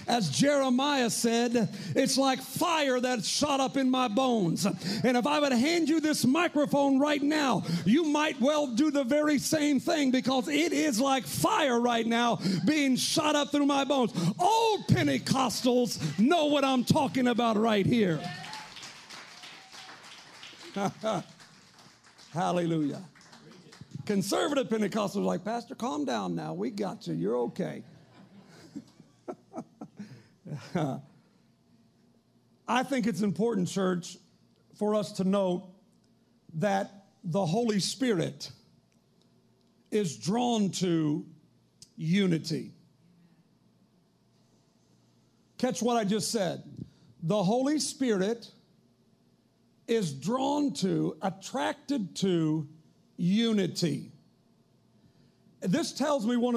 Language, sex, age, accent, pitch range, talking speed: English, male, 40-59, American, 190-270 Hz, 105 wpm